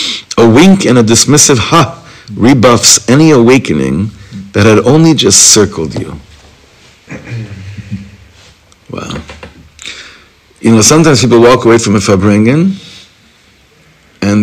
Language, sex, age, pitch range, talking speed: English, male, 60-79, 100-125 Hz, 110 wpm